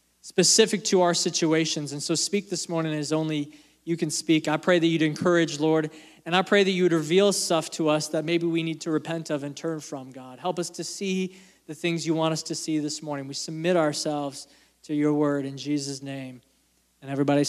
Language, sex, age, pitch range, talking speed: English, male, 20-39, 150-215 Hz, 225 wpm